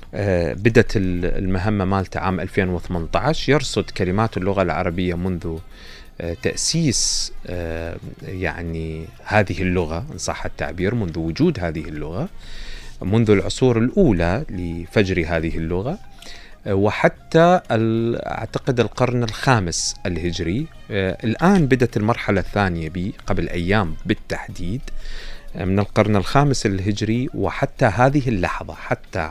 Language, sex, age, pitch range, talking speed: Arabic, male, 30-49, 85-115 Hz, 100 wpm